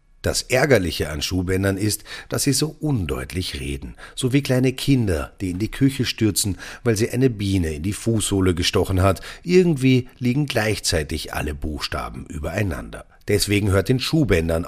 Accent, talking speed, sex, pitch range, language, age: German, 155 wpm, male, 85-130 Hz, German, 40-59